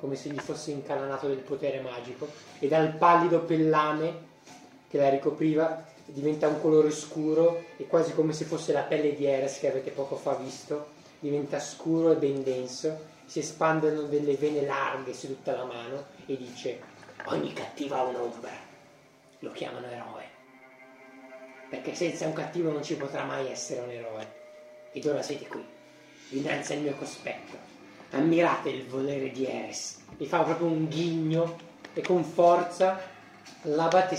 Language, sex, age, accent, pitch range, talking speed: Italian, male, 20-39, native, 140-165 Hz, 160 wpm